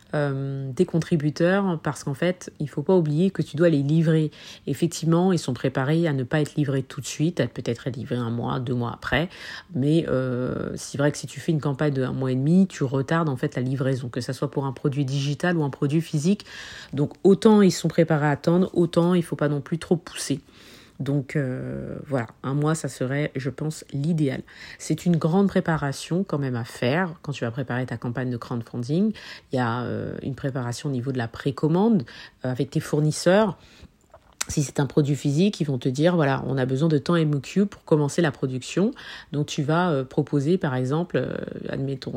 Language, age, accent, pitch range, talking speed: French, 40-59, French, 135-165 Hz, 220 wpm